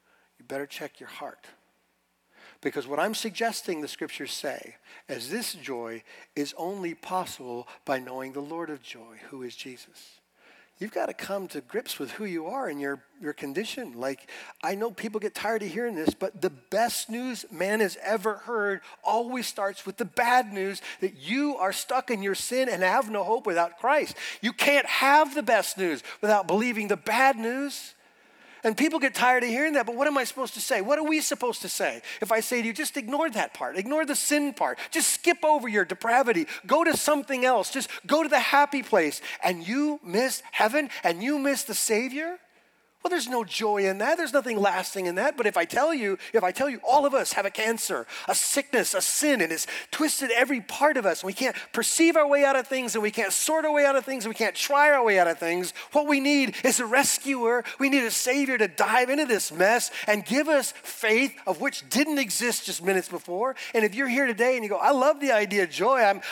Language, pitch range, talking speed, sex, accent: English, 195-280 Hz, 225 wpm, male, American